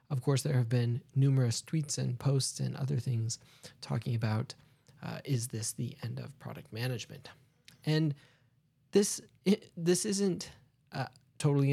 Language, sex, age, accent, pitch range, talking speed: English, male, 20-39, American, 125-150 Hz, 145 wpm